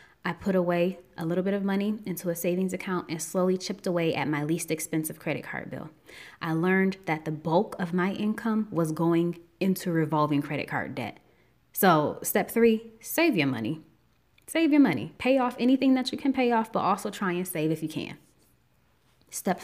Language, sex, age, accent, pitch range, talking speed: English, female, 20-39, American, 160-210 Hz, 195 wpm